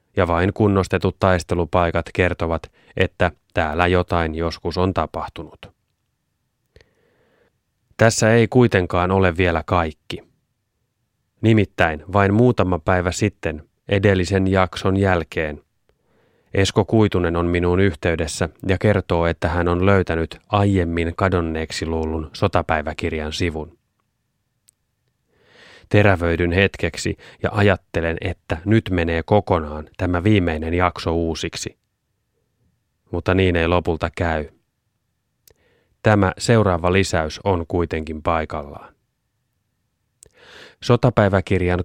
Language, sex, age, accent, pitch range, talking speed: Finnish, male, 30-49, native, 85-100 Hz, 95 wpm